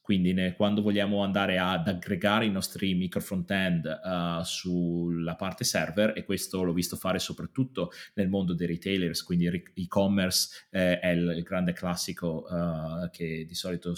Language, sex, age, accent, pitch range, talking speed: Italian, male, 30-49, native, 85-105 Hz, 140 wpm